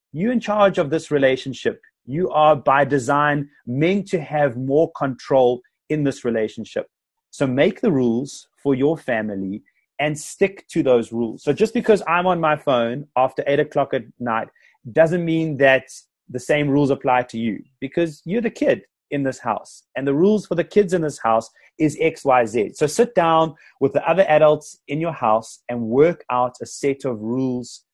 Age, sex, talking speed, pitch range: 30-49, male, 190 wpm, 125-165 Hz